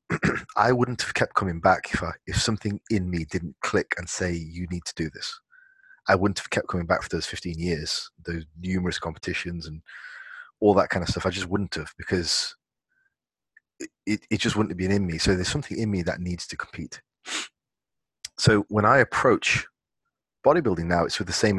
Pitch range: 85-105 Hz